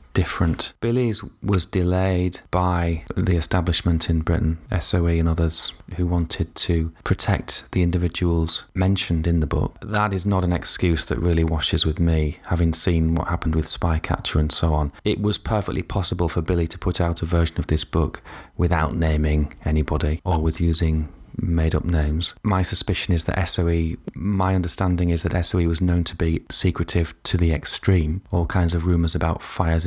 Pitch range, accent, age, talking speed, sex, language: 85-95 Hz, British, 30-49, 175 wpm, male, English